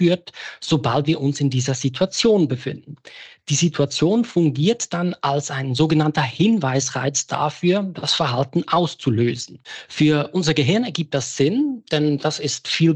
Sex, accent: male, German